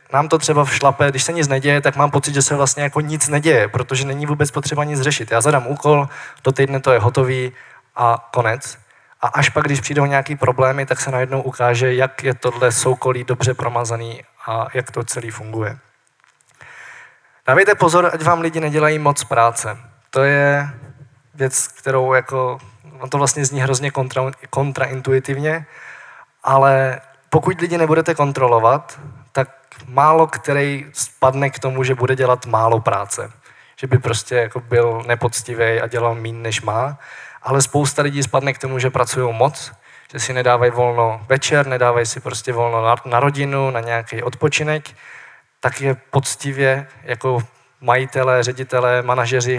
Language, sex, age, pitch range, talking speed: Czech, male, 20-39, 120-140 Hz, 160 wpm